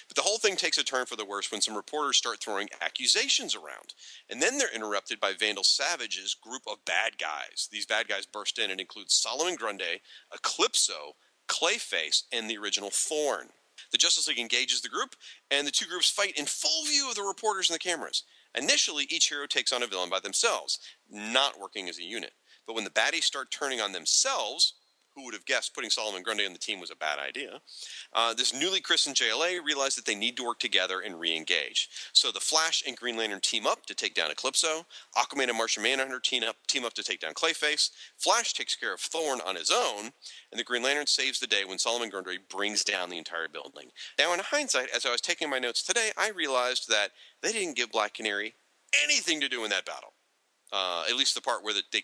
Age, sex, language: 40-59, male, English